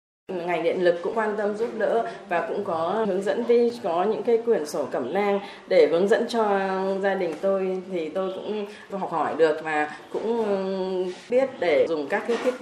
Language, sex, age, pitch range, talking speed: Vietnamese, female, 20-39, 150-200 Hz, 200 wpm